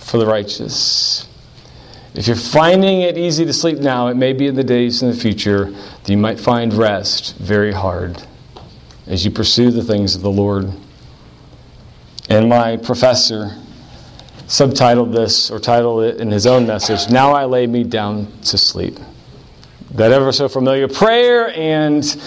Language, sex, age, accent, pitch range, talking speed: English, male, 40-59, American, 110-150 Hz, 160 wpm